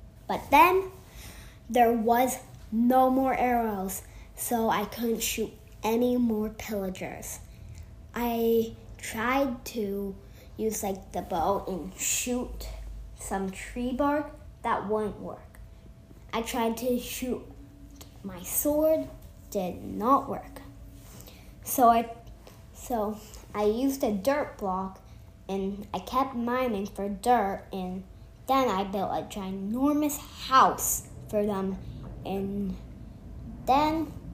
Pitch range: 195-250 Hz